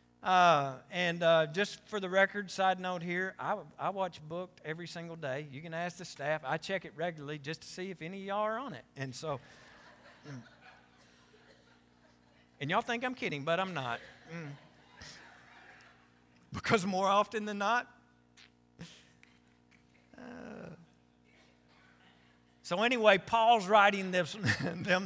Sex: male